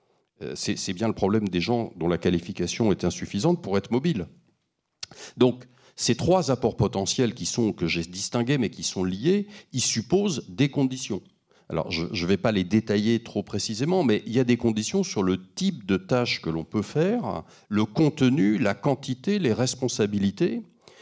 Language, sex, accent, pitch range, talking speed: French, male, French, 95-145 Hz, 175 wpm